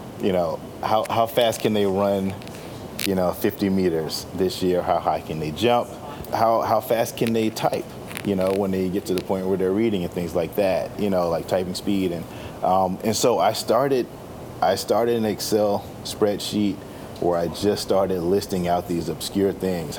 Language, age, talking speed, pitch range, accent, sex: English, 30-49, 195 wpm, 90-105 Hz, American, male